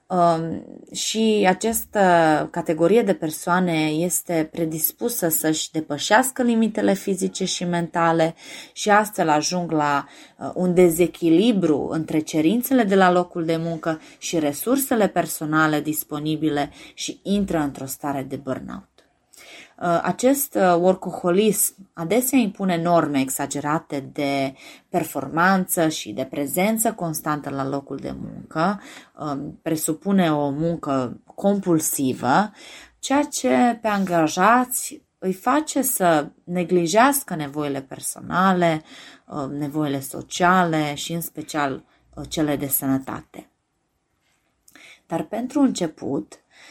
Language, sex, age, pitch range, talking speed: Romanian, female, 20-39, 150-195 Hz, 100 wpm